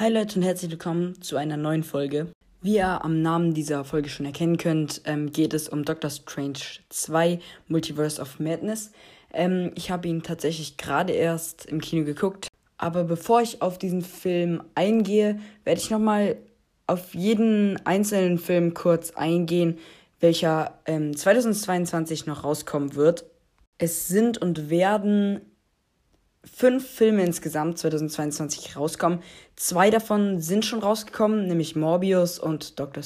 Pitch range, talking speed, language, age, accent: 160-205 Hz, 140 wpm, German, 20-39, German